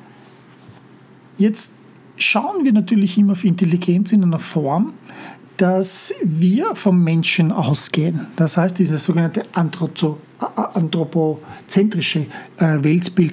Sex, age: male, 50-69